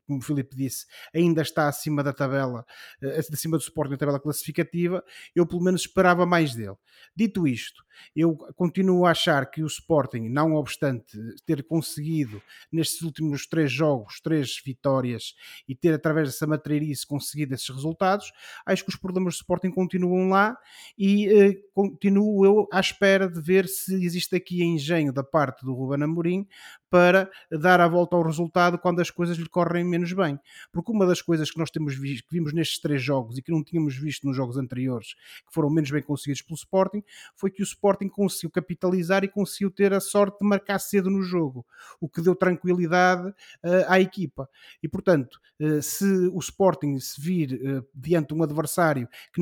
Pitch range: 145-180 Hz